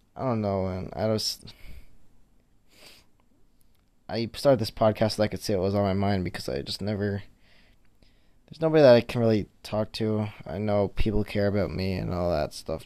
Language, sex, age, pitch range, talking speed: English, male, 20-39, 100-125 Hz, 190 wpm